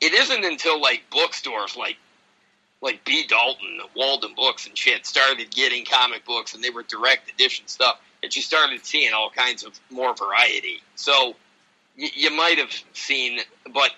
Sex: male